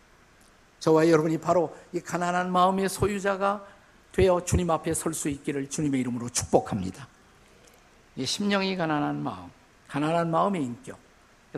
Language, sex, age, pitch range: Korean, male, 50-69, 145-190 Hz